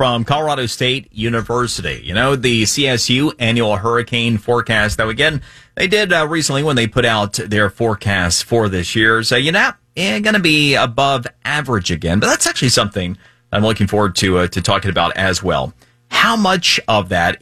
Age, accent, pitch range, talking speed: 30-49, American, 105-125 Hz, 190 wpm